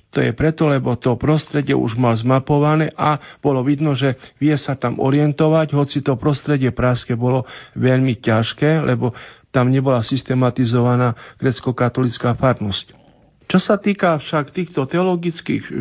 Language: Slovak